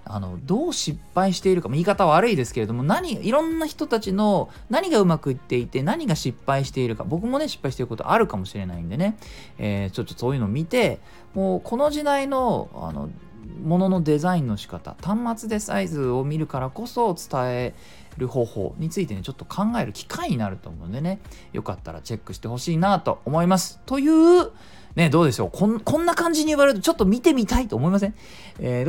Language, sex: Japanese, male